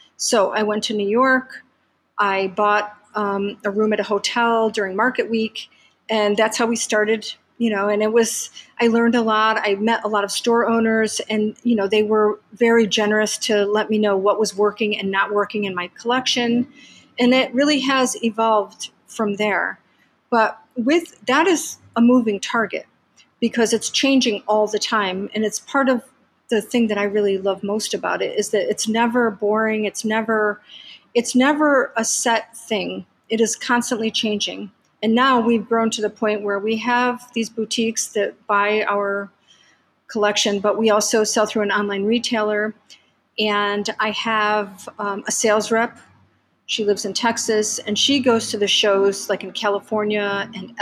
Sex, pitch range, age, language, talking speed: female, 205-230 Hz, 40-59, English, 180 wpm